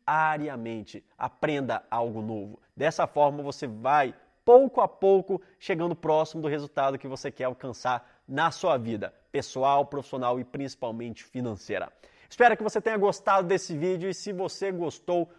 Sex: male